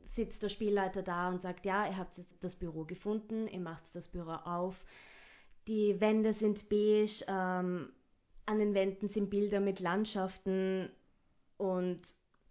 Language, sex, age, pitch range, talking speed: German, female, 20-39, 175-215 Hz, 150 wpm